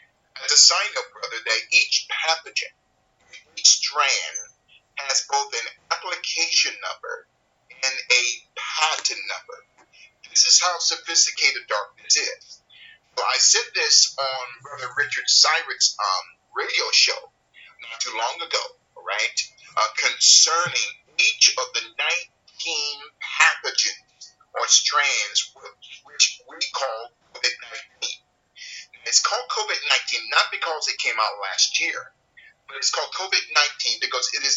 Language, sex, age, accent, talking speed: English, male, 30-49, American, 125 wpm